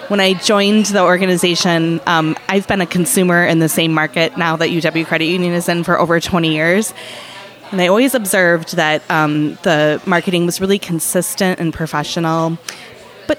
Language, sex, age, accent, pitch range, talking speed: English, female, 20-39, American, 165-205 Hz, 175 wpm